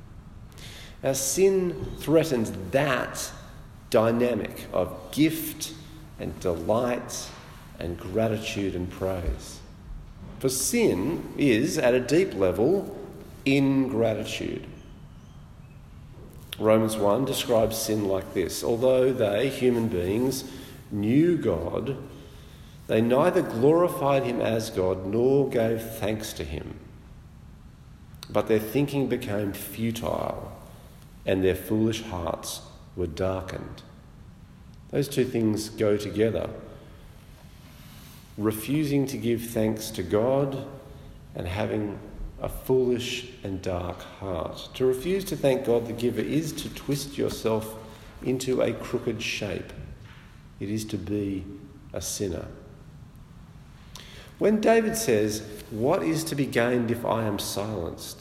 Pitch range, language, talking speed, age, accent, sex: 100-130 Hz, English, 110 wpm, 50-69, Australian, male